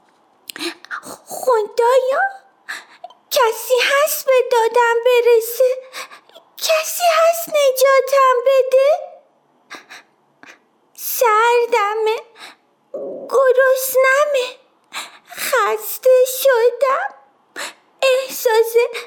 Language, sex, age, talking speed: Persian, female, 30-49, 45 wpm